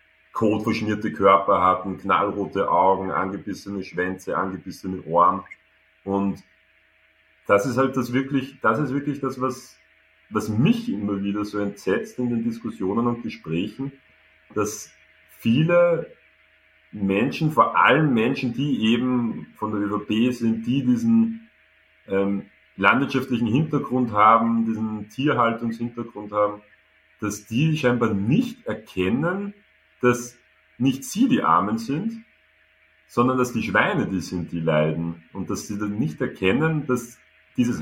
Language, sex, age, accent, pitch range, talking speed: German, male, 40-59, German, 100-135 Hz, 125 wpm